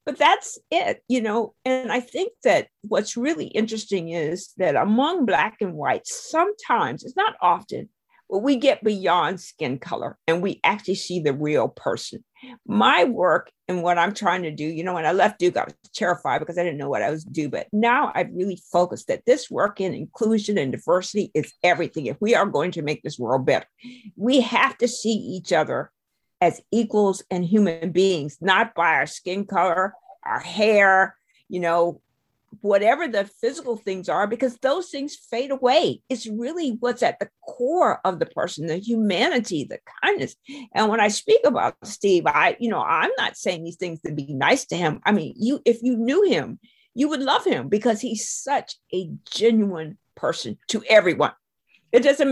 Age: 50-69